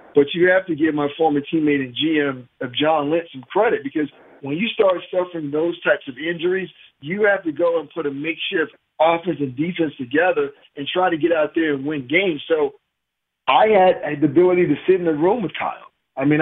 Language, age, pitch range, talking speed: English, 50-69, 150-185 Hz, 215 wpm